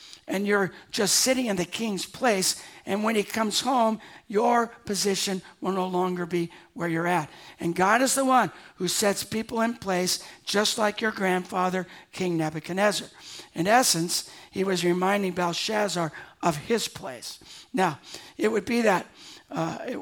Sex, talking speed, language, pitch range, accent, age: male, 160 wpm, English, 170-210 Hz, American, 60-79